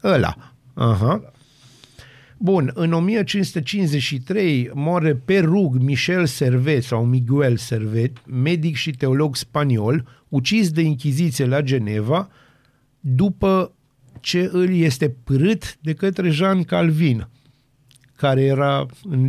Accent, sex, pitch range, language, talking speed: native, male, 125-155 Hz, Romanian, 105 wpm